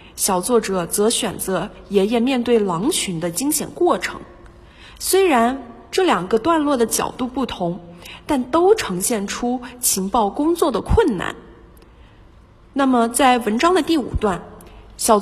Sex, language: female, Chinese